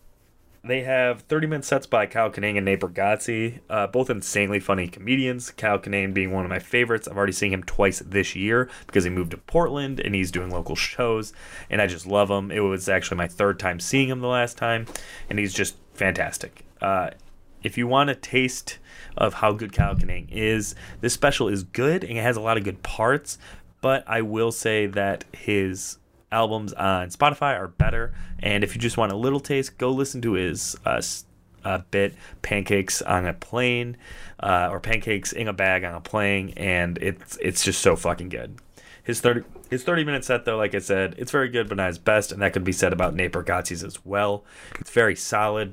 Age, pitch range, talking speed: 30-49, 95-120 Hz, 205 wpm